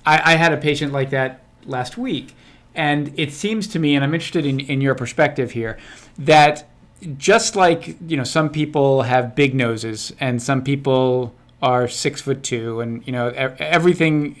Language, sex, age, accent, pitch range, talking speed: English, male, 40-59, American, 125-150 Hz, 175 wpm